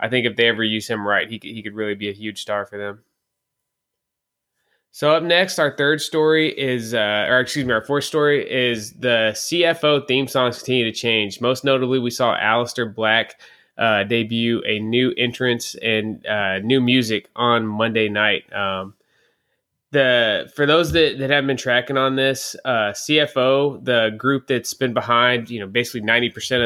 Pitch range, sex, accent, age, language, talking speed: 110-135 Hz, male, American, 20-39, English, 180 wpm